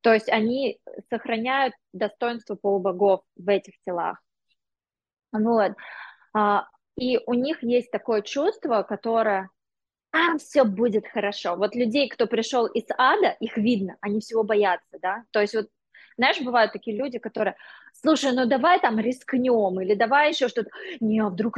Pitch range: 205-255 Hz